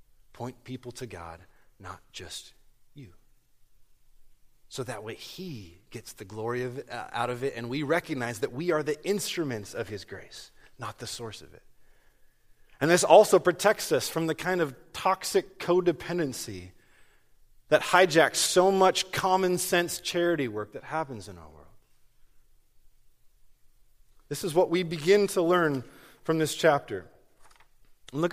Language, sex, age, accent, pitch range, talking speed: English, male, 30-49, American, 110-170 Hz, 145 wpm